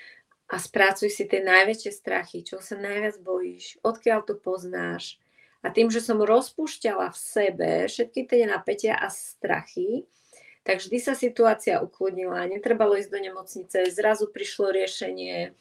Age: 30-49